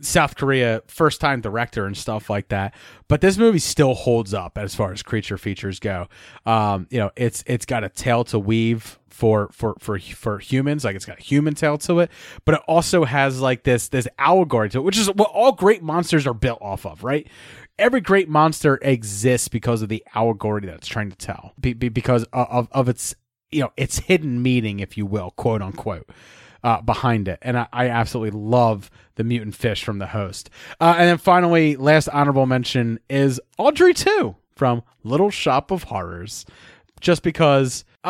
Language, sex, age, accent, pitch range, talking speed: English, male, 30-49, American, 110-150 Hz, 195 wpm